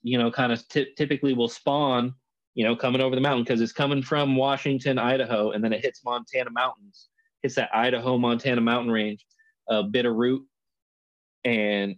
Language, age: English, 20-39